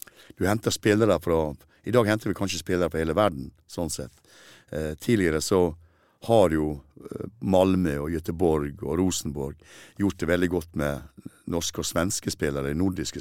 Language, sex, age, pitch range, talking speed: Swedish, male, 60-79, 80-95 Hz, 155 wpm